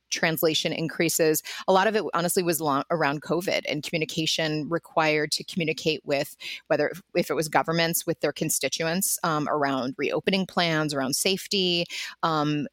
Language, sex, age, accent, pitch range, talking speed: English, female, 30-49, American, 155-180 Hz, 150 wpm